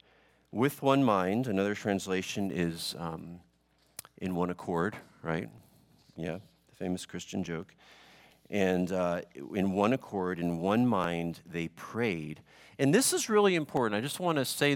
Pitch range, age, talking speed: 85-115 Hz, 50-69, 145 wpm